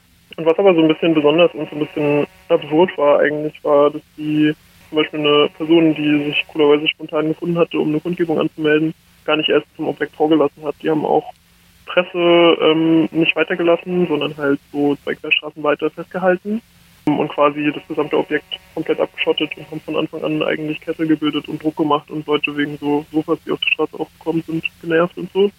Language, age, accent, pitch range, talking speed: German, 20-39, German, 145-160 Hz, 195 wpm